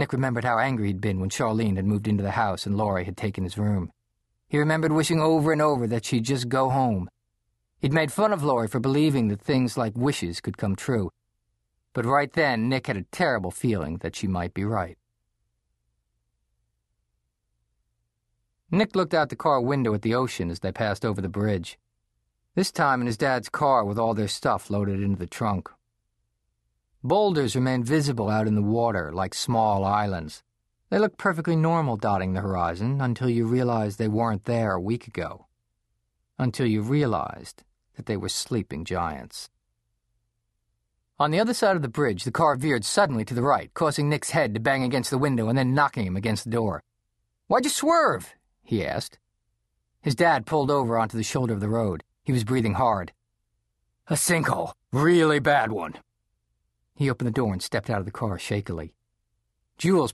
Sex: male